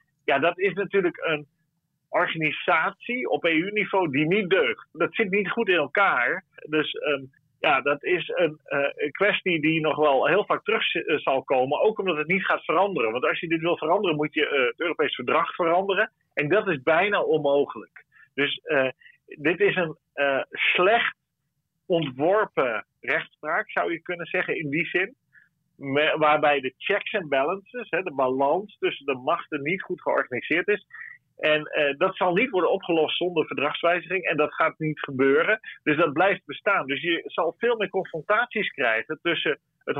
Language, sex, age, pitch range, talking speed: Dutch, male, 40-59, 150-200 Hz, 175 wpm